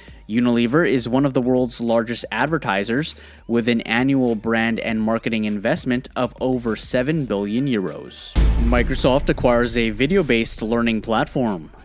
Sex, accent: male, American